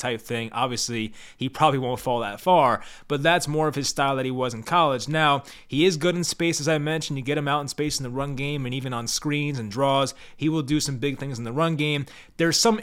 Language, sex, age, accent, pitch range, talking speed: English, male, 20-39, American, 125-155 Hz, 265 wpm